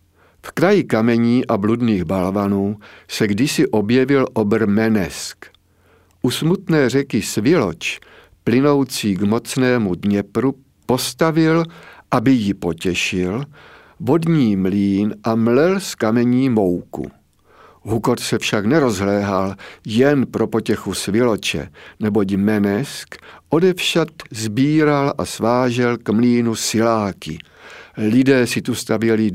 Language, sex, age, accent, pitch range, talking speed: Czech, male, 50-69, native, 100-130 Hz, 105 wpm